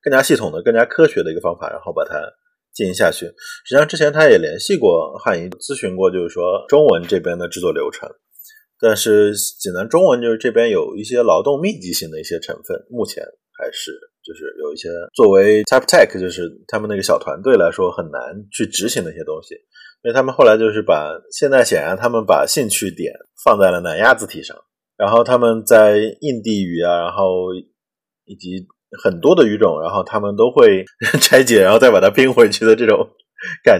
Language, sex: Chinese, male